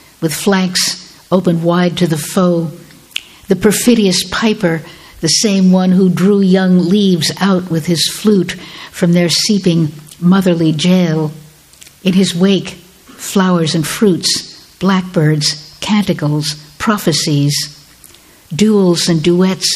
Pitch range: 155-185 Hz